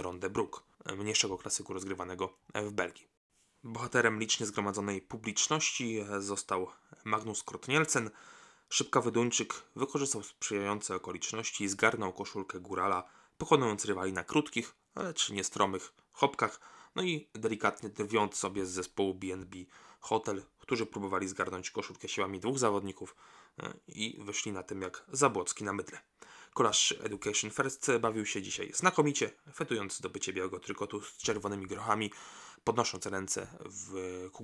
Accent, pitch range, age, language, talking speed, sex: native, 95-110 Hz, 20-39, Polish, 125 wpm, male